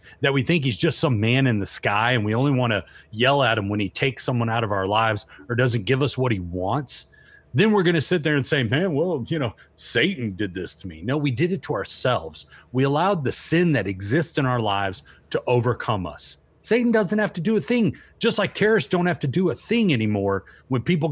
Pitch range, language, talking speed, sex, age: 90-150 Hz, English, 240 wpm, male, 40-59